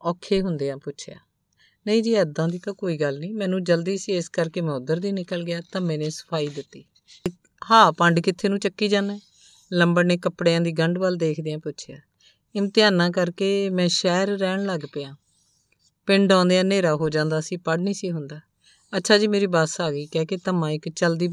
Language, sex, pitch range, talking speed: Punjabi, female, 160-185 Hz, 190 wpm